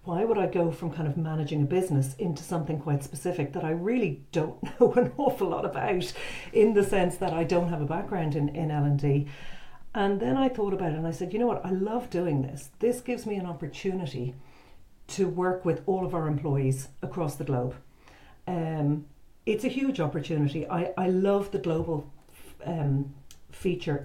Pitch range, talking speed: 145-180 Hz, 195 wpm